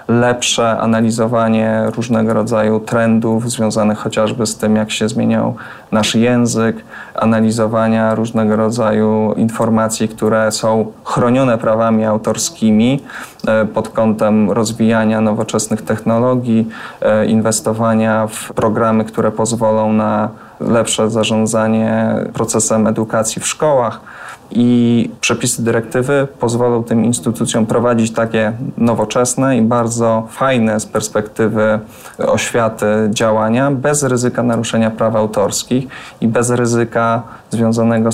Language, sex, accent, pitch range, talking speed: Polish, male, native, 110-115 Hz, 100 wpm